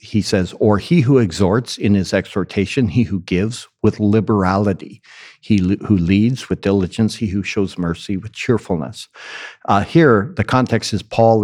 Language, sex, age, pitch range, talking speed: English, male, 60-79, 95-115 Hz, 165 wpm